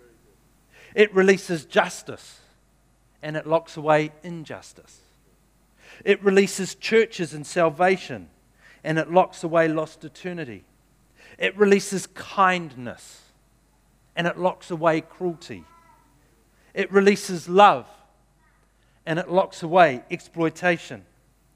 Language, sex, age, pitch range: English, male, 50-69, 145-185 Hz